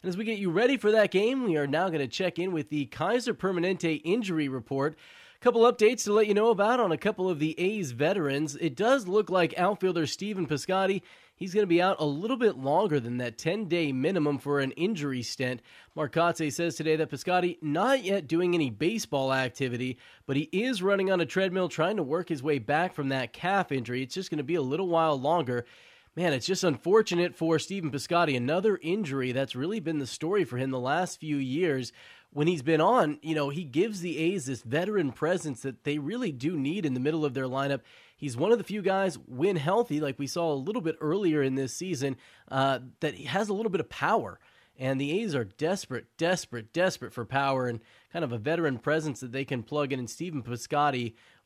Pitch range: 135-185 Hz